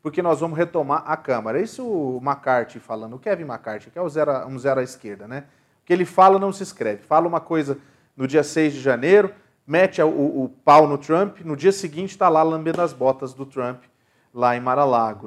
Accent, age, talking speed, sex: Brazilian, 40-59, 215 wpm, male